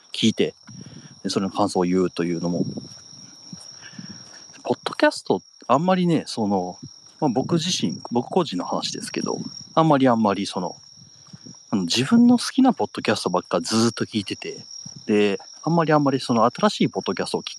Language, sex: Japanese, male